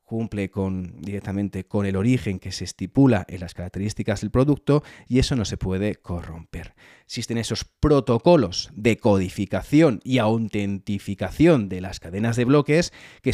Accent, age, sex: Spanish, 30-49, male